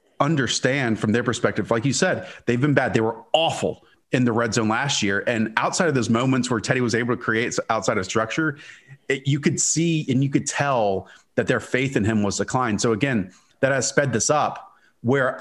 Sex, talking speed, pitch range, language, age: male, 215 wpm, 110-140 Hz, English, 30-49